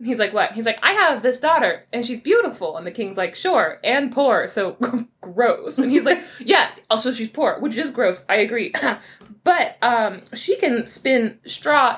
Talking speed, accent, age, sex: 195 wpm, American, 20-39, female